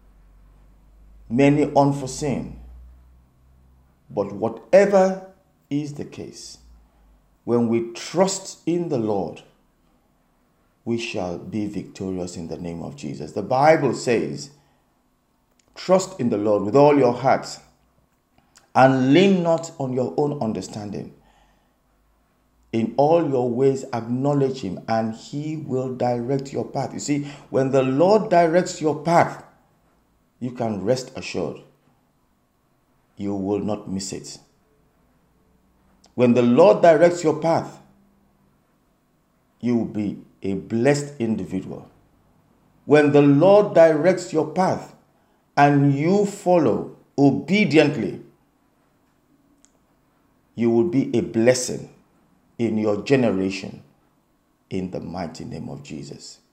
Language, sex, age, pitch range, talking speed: English, male, 50-69, 95-150 Hz, 110 wpm